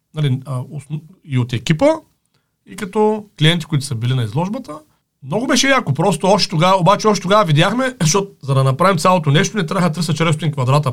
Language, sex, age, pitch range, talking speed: Bulgarian, male, 40-59, 140-205 Hz, 175 wpm